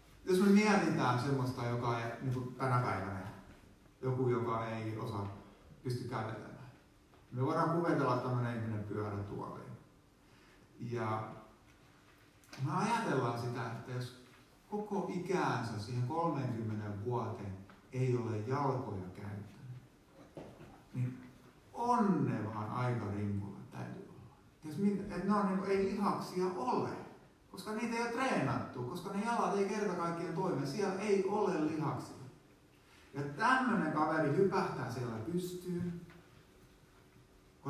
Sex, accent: male, native